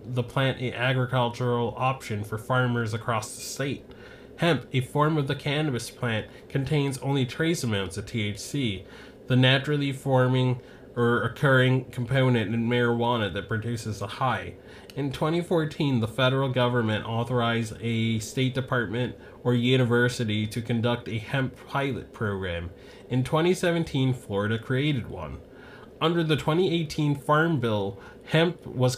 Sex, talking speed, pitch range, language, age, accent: male, 135 wpm, 115-135 Hz, English, 20-39, American